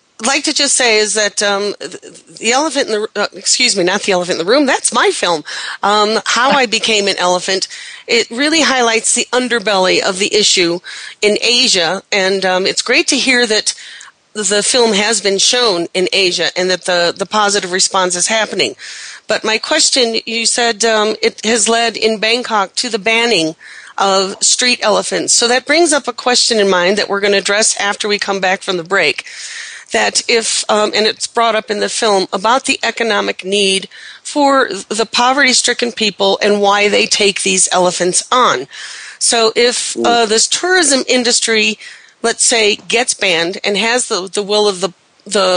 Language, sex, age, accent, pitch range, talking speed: English, female, 40-59, American, 200-240 Hz, 185 wpm